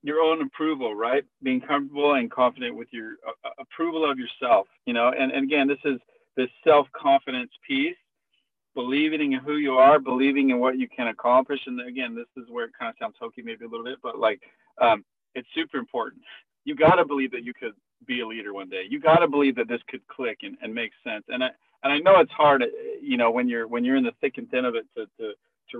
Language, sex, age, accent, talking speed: English, male, 40-59, American, 235 wpm